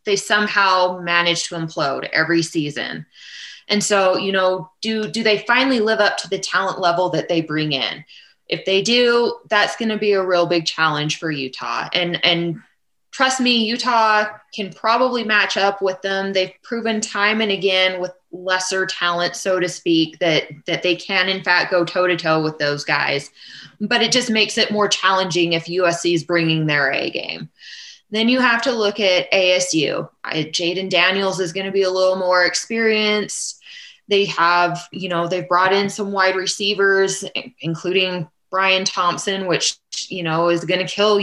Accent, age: American, 20-39